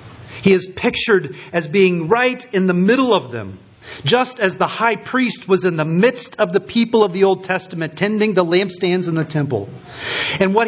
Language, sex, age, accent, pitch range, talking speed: English, male, 40-59, American, 155-230 Hz, 195 wpm